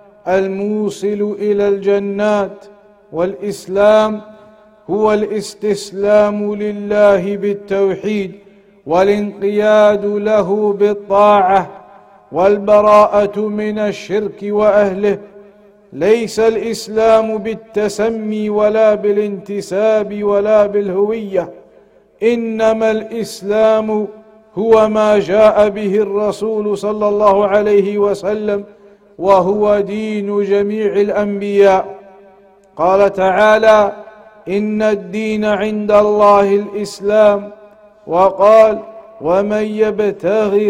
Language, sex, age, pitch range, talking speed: English, male, 50-69, 200-215 Hz, 70 wpm